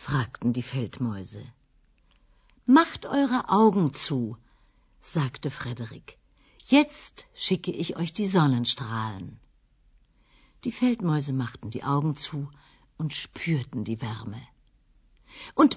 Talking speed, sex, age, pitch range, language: 100 wpm, female, 50-69, 125-200 Hz, Swahili